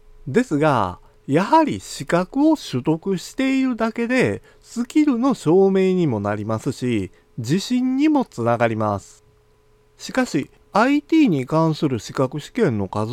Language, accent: Japanese, native